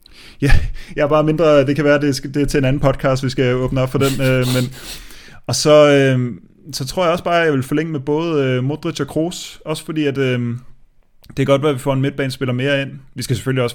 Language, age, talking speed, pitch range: Danish, 20-39, 245 wpm, 120-140 Hz